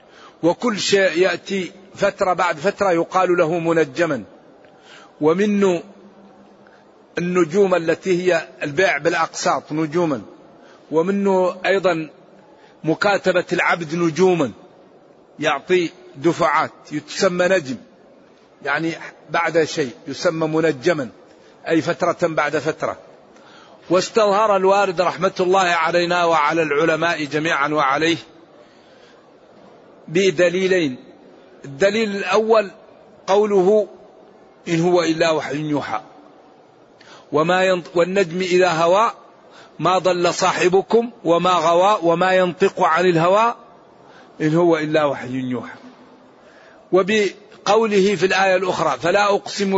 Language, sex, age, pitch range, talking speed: Arabic, male, 50-69, 165-190 Hz, 90 wpm